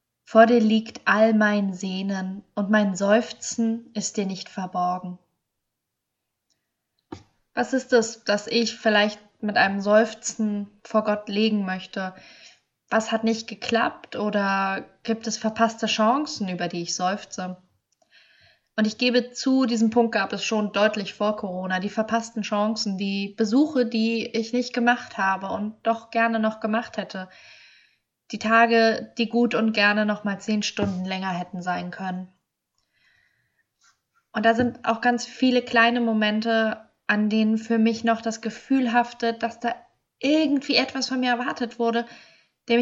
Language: German